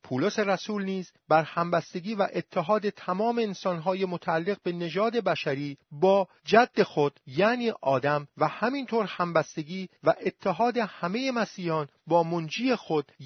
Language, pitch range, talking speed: Persian, 145-205 Hz, 125 wpm